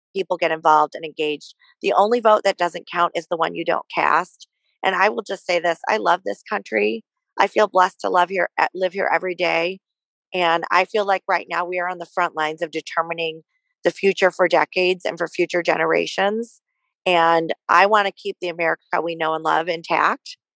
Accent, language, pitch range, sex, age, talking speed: American, English, 160-195 Hz, female, 40-59, 205 wpm